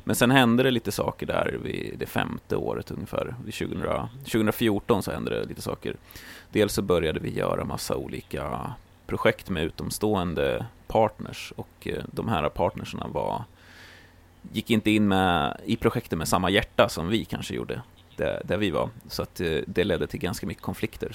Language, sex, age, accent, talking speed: Swedish, male, 30-49, native, 175 wpm